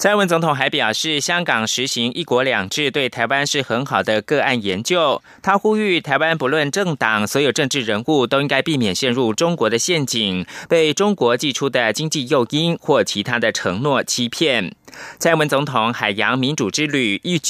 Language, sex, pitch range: German, male, 125-175 Hz